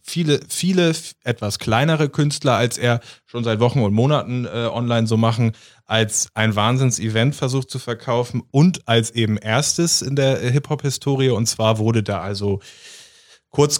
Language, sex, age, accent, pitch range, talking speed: German, male, 30-49, German, 110-130 Hz, 150 wpm